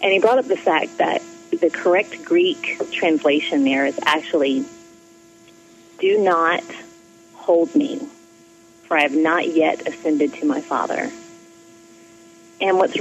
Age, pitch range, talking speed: 30-49, 145-215 Hz, 135 wpm